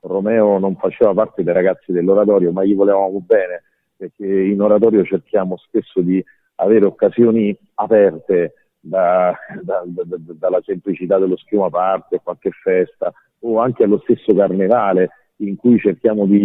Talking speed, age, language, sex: 145 wpm, 40-59, Italian, male